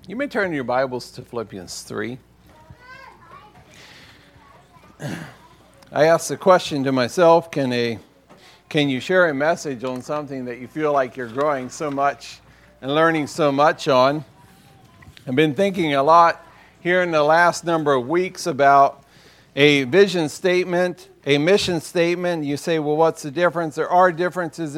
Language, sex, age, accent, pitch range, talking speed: English, male, 50-69, American, 145-190 Hz, 155 wpm